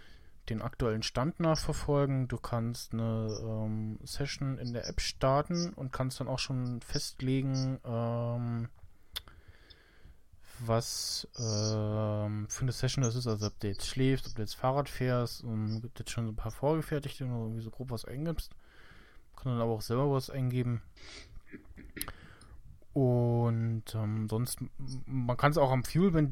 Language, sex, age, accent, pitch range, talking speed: German, male, 20-39, German, 110-135 Hz, 155 wpm